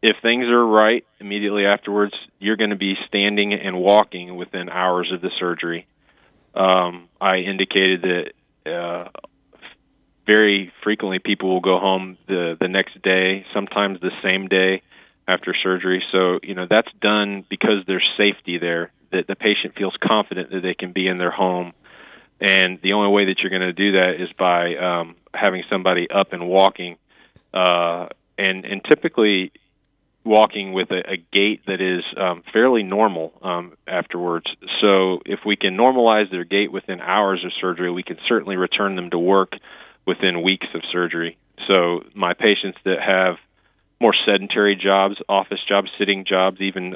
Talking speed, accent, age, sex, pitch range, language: 165 wpm, American, 30-49, male, 90-100 Hz, English